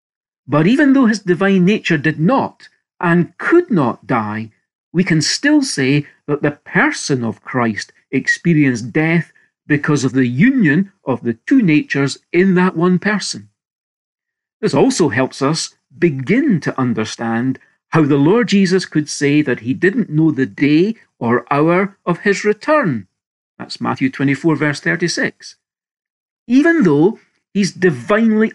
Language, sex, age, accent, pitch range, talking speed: English, male, 50-69, British, 140-200 Hz, 145 wpm